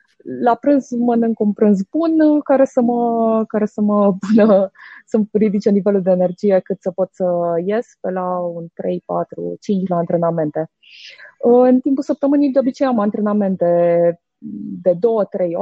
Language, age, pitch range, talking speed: Romanian, 20-39, 185-255 Hz, 145 wpm